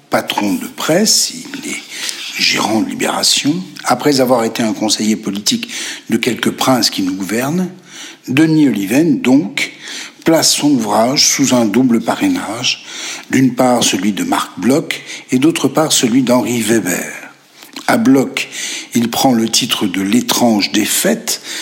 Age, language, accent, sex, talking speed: 60-79, French, French, male, 140 wpm